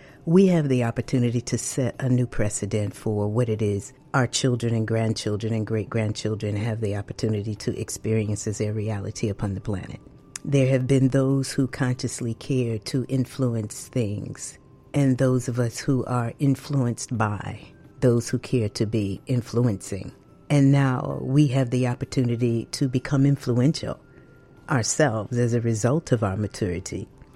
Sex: female